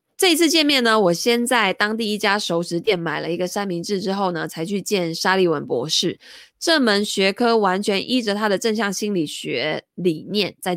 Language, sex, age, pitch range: Chinese, female, 20-39, 170-230 Hz